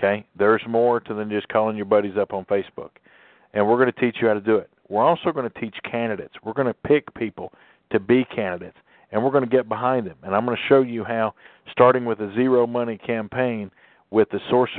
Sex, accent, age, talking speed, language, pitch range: male, American, 50-69, 240 wpm, English, 100-115 Hz